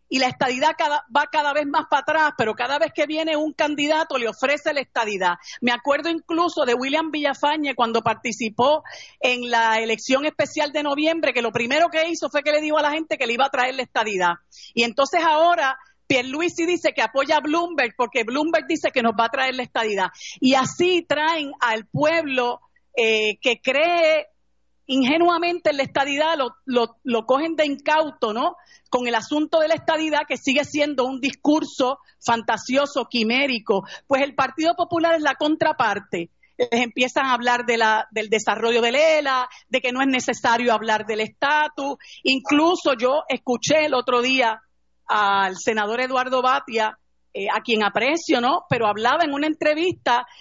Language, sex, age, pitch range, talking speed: Spanish, female, 50-69, 240-310 Hz, 175 wpm